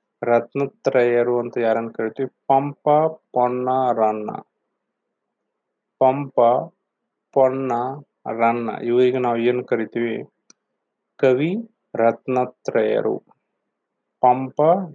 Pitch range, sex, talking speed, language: 120-140 Hz, male, 70 wpm, Kannada